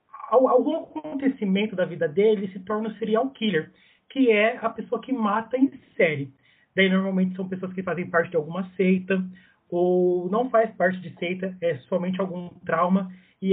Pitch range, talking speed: 175-210 Hz, 175 wpm